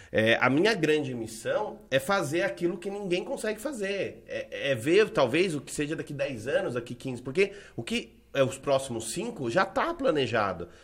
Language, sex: Portuguese, male